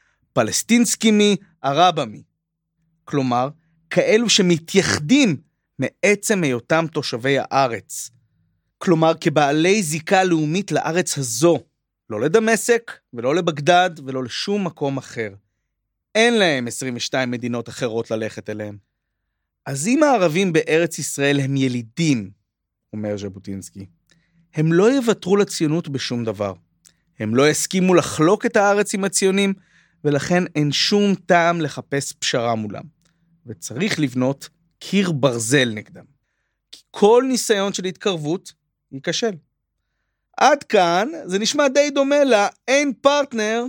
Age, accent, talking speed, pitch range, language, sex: 30-49, native, 110 wpm, 125-190 Hz, Hebrew, male